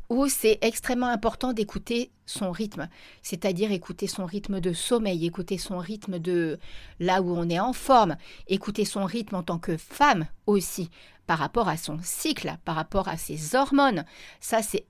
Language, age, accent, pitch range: French, 40-59, French, 185-240 Hz